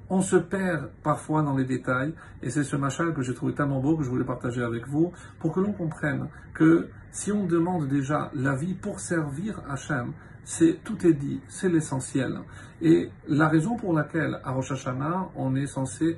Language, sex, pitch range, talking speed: French, male, 125-165 Hz, 195 wpm